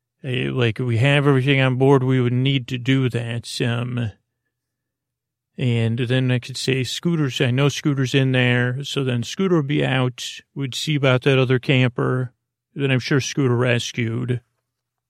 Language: English